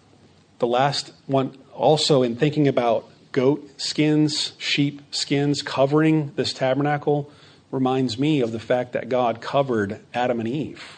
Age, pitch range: 40-59, 120-150 Hz